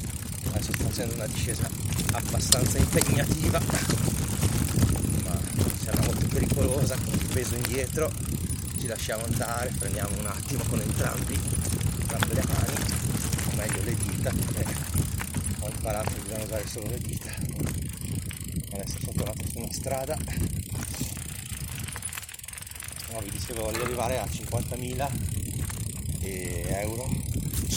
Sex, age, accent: male, 30-49, native